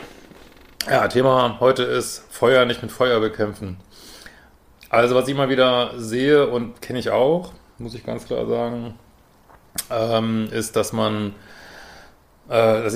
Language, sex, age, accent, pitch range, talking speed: German, male, 30-49, German, 100-120 Hz, 140 wpm